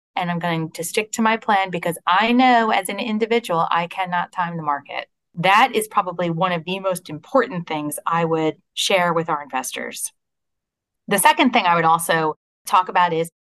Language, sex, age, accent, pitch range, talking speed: English, female, 30-49, American, 170-225 Hz, 190 wpm